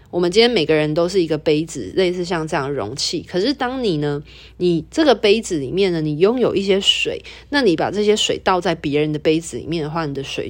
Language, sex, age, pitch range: Chinese, female, 30-49, 150-205 Hz